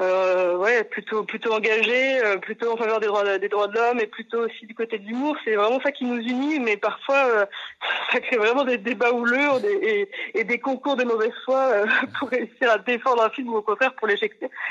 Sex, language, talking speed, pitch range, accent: female, French, 240 wpm, 210-255 Hz, French